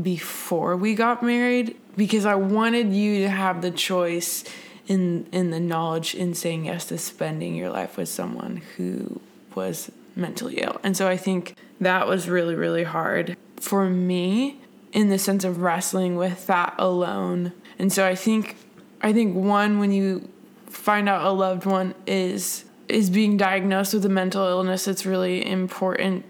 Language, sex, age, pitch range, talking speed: English, female, 20-39, 180-205 Hz, 165 wpm